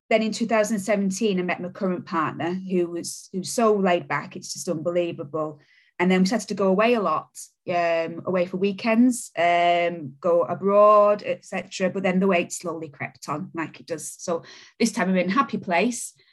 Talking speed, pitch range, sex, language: 190 wpm, 170-195 Hz, female, English